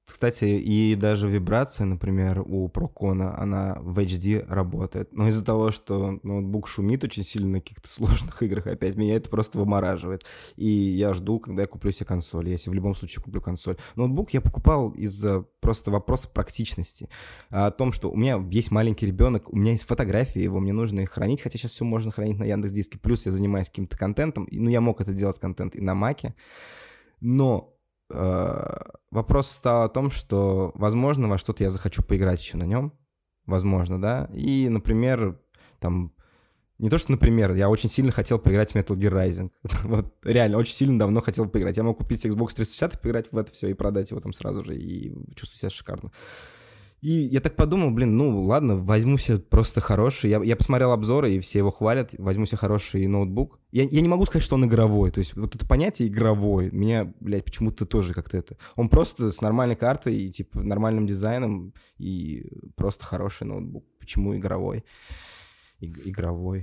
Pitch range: 95-115 Hz